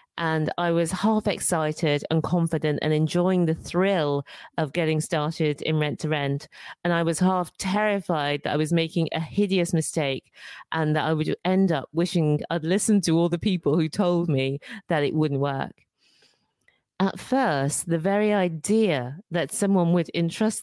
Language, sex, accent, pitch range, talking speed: English, female, British, 155-195 Hz, 170 wpm